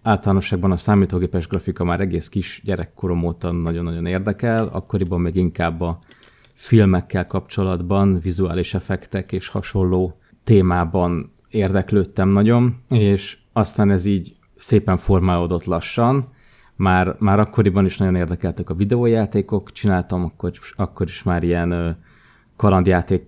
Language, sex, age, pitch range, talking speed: Hungarian, male, 20-39, 90-105 Hz, 120 wpm